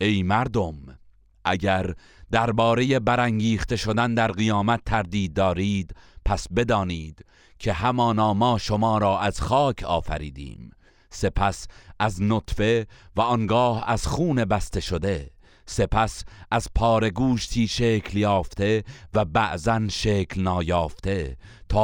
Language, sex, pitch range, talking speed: Persian, male, 95-115 Hz, 110 wpm